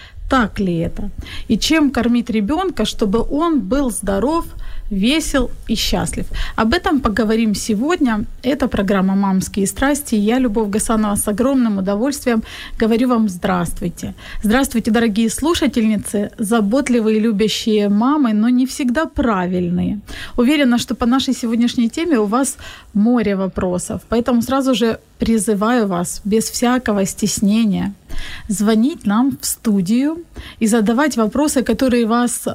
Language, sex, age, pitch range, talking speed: Ukrainian, female, 30-49, 210-255 Hz, 125 wpm